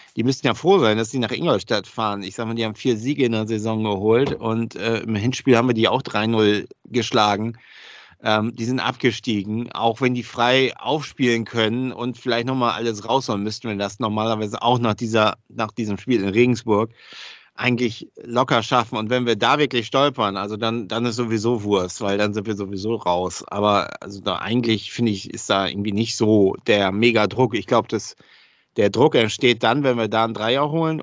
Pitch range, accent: 105-120 Hz, German